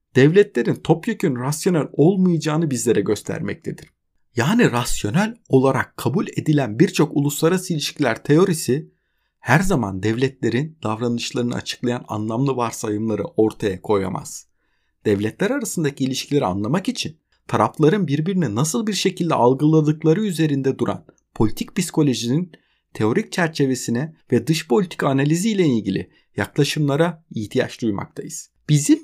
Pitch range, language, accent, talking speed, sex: 125-175 Hz, Turkish, native, 105 wpm, male